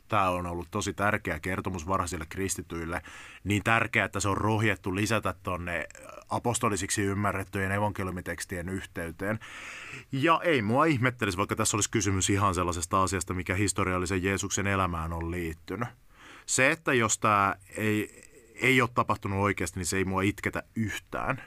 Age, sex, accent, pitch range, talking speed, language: 30-49, male, native, 90-105 Hz, 145 wpm, Finnish